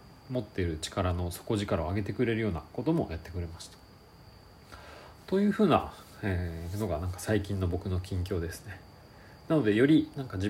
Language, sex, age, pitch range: Japanese, male, 40-59, 90-120 Hz